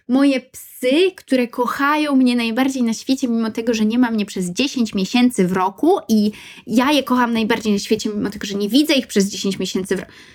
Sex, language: female, Polish